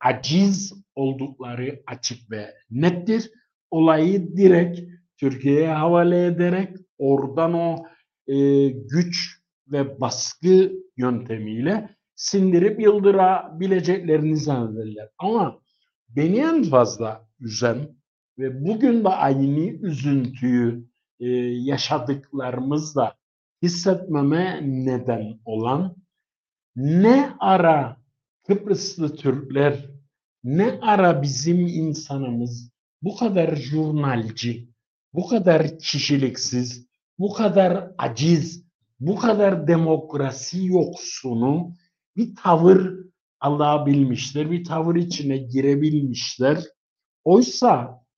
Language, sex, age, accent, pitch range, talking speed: Turkish, male, 60-79, native, 130-175 Hz, 80 wpm